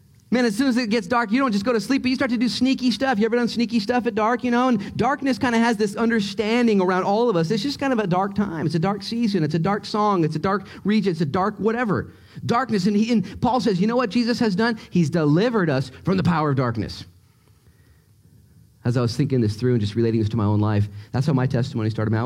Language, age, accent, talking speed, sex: English, 40-59, American, 270 wpm, male